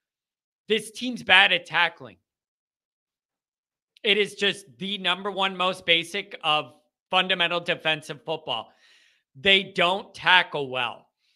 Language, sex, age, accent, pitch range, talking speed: English, male, 40-59, American, 170-205 Hz, 110 wpm